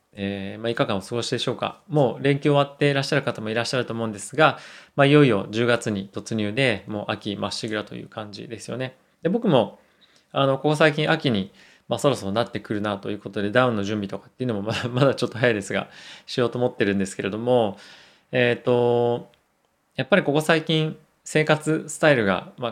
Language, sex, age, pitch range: Japanese, male, 20-39, 105-140 Hz